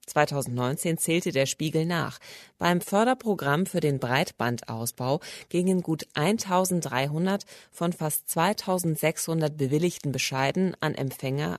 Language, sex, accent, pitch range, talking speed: German, female, German, 135-185 Hz, 105 wpm